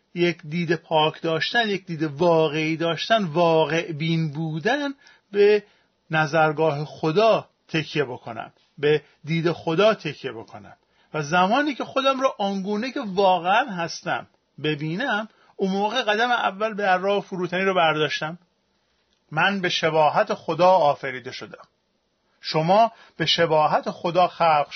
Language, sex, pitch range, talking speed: Persian, male, 160-200 Hz, 125 wpm